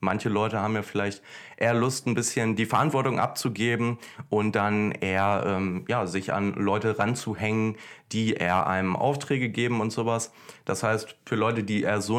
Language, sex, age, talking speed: German, male, 20-39, 165 wpm